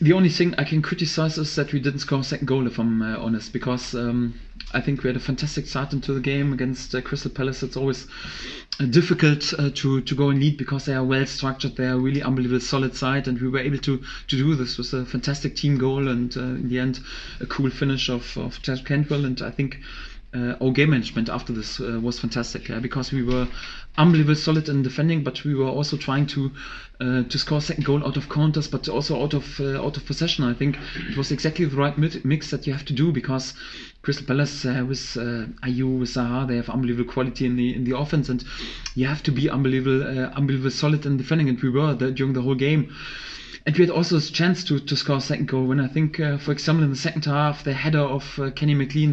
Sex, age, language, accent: male, 20-39, English, German